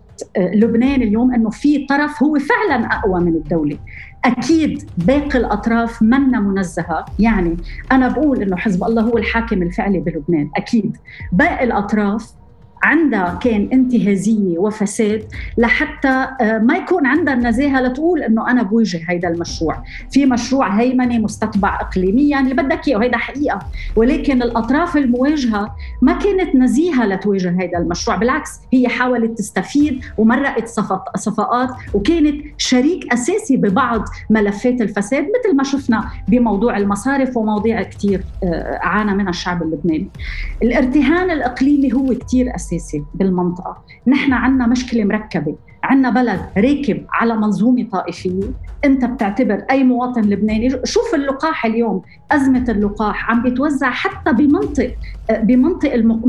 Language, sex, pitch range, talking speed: Arabic, female, 205-270 Hz, 125 wpm